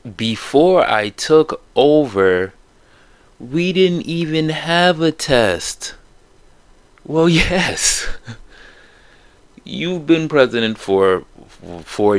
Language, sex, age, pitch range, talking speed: English, male, 20-39, 95-145 Hz, 85 wpm